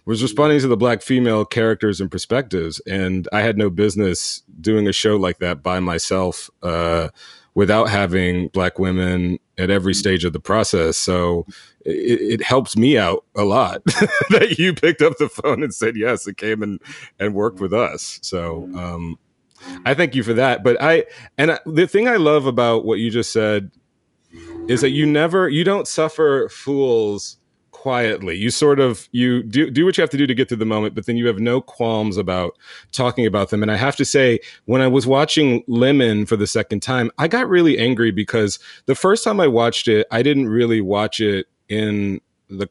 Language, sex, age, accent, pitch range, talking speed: English, male, 30-49, American, 100-135 Hz, 200 wpm